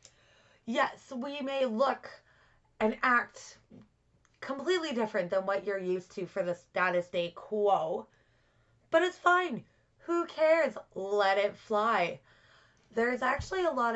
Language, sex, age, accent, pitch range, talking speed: English, female, 20-39, American, 185-255 Hz, 125 wpm